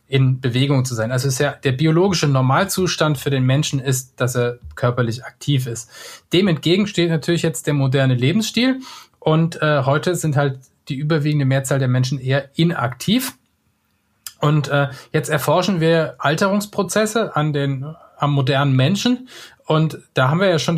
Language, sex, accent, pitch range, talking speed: German, male, German, 130-165 Hz, 165 wpm